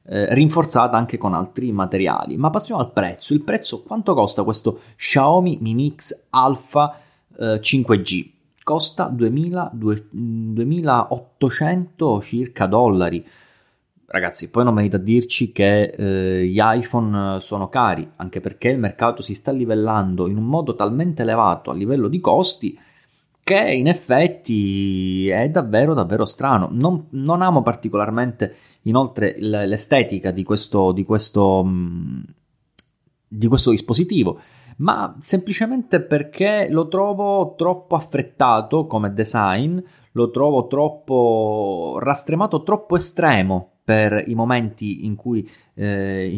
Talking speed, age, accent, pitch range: 125 wpm, 20-39, native, 105-150 Hz